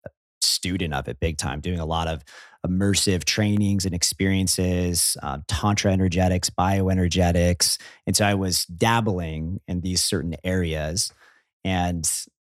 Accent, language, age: American, English, 30-49